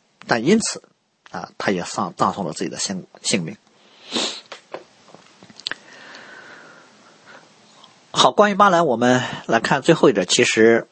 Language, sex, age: Chinese, male, 50-69